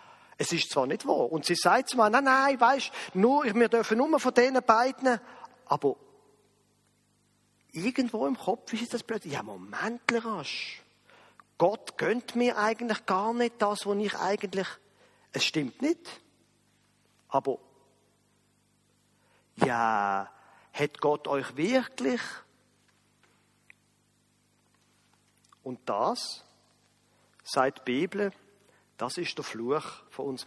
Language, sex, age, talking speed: German, male, 40-59, 115 wpm